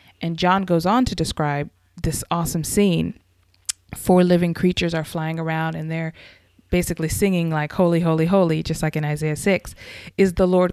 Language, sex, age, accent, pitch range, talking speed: English, female, 20-39, American, 155-185 Hz, 175 wpm